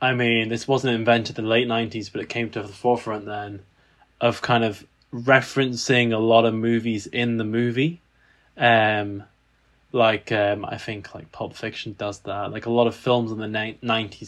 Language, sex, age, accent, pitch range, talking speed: English, male, 10-29, British, 110-135 Hz, 185 wpm